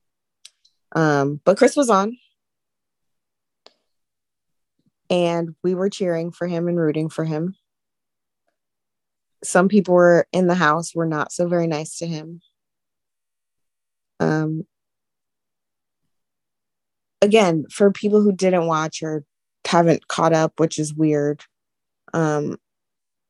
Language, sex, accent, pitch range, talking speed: English, female, American, 140-170 Hz, 110 wpm